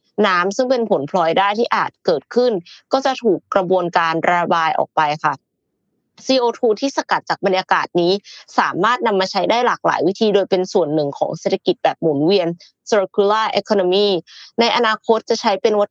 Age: 20-39